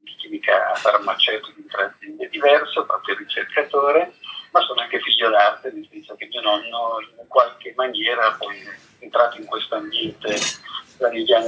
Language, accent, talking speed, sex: Italian, native, 150 wpm, male